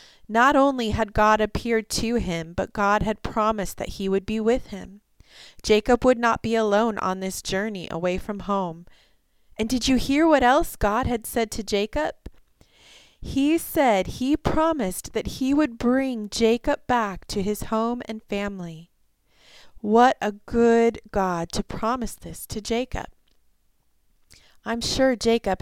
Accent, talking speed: American, 155 wpm